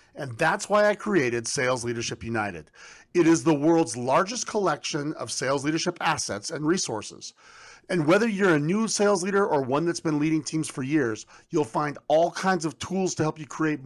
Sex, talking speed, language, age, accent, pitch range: male, 195 wpm, English, 40-59, American, 140-190 Hz